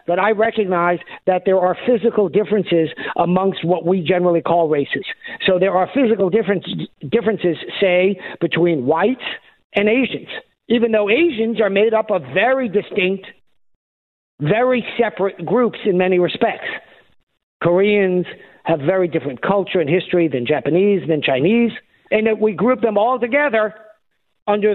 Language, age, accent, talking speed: English, 50-69, American, 145 wpm